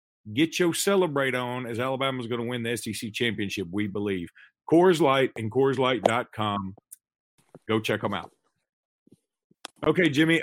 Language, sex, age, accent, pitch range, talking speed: English, male, 40-59, American, 120-160 Hz, 140 wpm